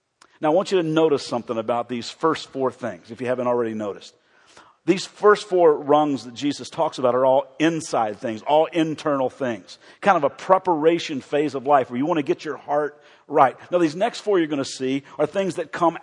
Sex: male